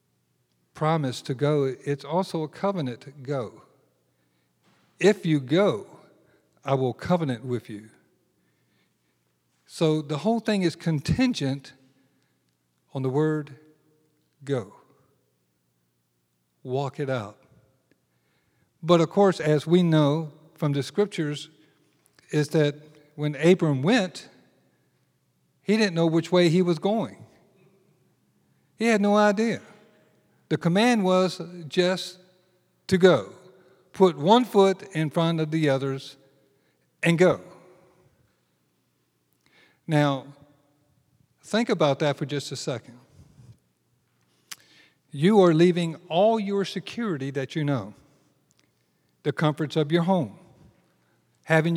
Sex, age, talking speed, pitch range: male, 50-69, 110 wpm, 130-175 Hz